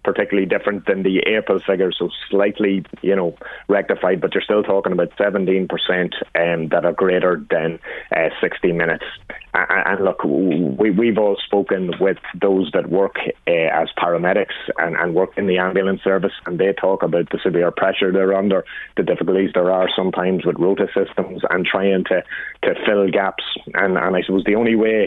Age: 30-49